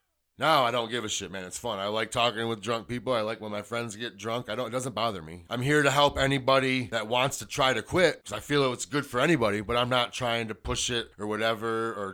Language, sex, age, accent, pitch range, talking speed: English, male, 30-49, American, 105-130 Hz, 275 wpm